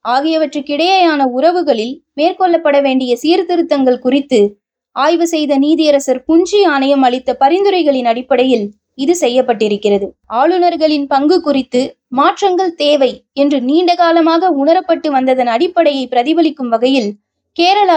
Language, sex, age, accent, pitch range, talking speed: Tamil, female, 20-39, native, 260-335 Hz, 95 wpm